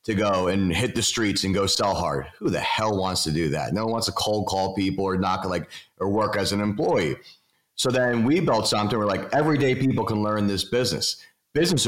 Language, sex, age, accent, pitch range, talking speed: English, male, 40-59, American, 100-125 Hz, 230 wpm